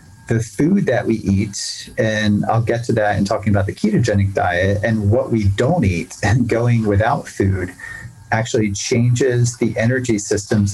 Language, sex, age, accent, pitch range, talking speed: English, male, 30-49, American, 100-115 Hz, 170 wpm